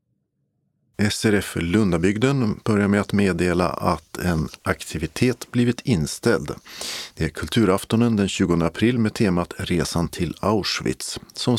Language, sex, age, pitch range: Swedish, male, 50-69, 90-115 Hz